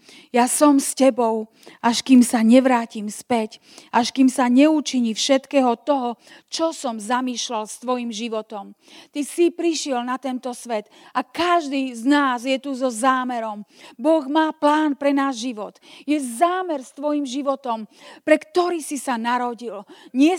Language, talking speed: Slovak, 155 wpm